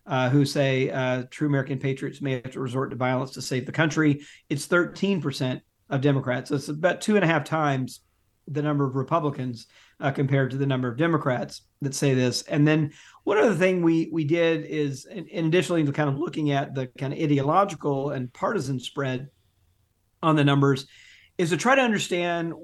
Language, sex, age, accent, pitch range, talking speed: English, male, 40-59, American, 130-155 Hz, 195 wpm